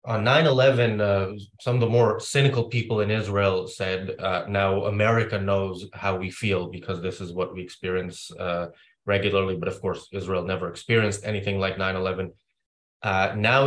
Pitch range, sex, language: 95-105 Hz, male, English